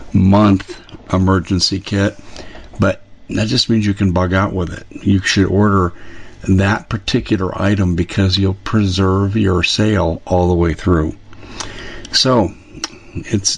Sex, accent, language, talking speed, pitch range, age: male, American, English, 135 wpm, 90-110 Hz, 60-79